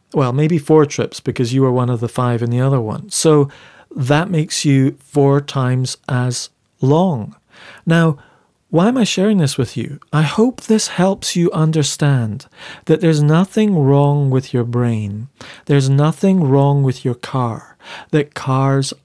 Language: English